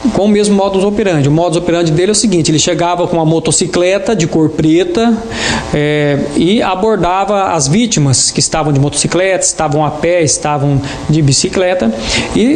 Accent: Brazilian